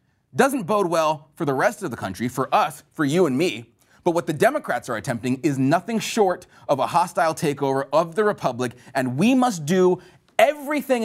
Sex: male